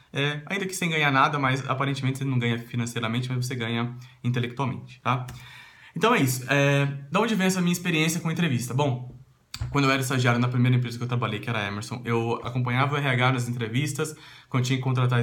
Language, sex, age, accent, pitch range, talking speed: Portuguese, male, 20-39, Brazilian, 120-140 Hz, 215 wpm